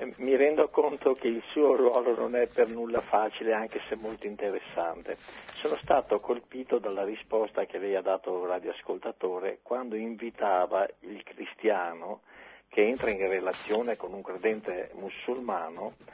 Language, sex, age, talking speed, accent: Italian, male, 50-69, 145 wpm, native